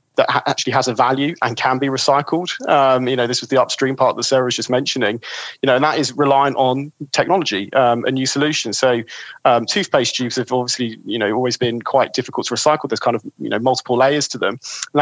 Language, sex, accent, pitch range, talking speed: English, male, British, 120-135 Hz, 230 wpm